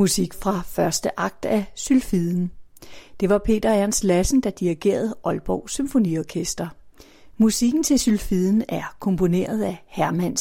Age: 40-59